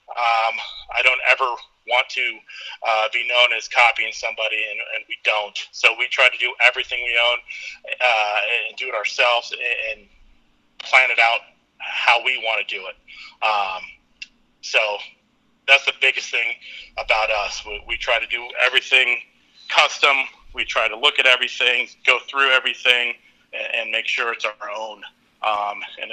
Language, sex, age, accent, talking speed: English, male, 30-49, American, 165 wpm